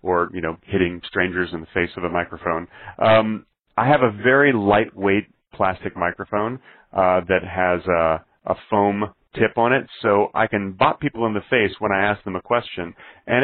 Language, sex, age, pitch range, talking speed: English, male, 30-49, 95-115 Hz, 190 wpm